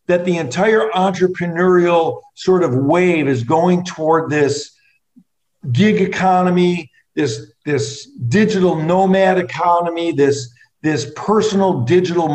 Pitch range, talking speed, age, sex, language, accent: 145-185 Hz, 105 wpm, 50-69, male, English, American